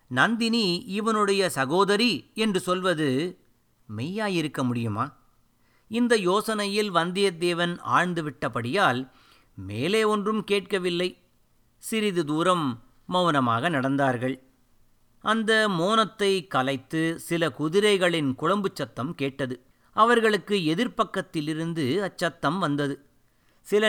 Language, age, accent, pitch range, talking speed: Tamil, 50-69, native, 140-195 Hz, 80 wpm